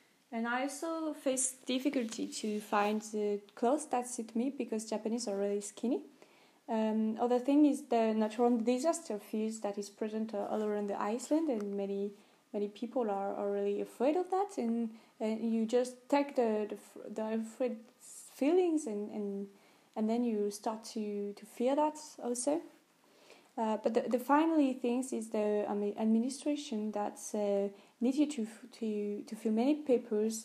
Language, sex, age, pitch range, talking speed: English, female, 20-39, 215-260 Hz, 160 wpm